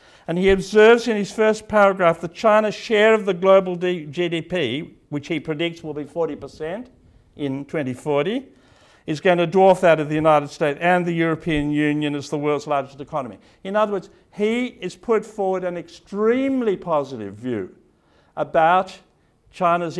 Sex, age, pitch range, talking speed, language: male, 50-69, 160-205 Hz, 160 wpm, English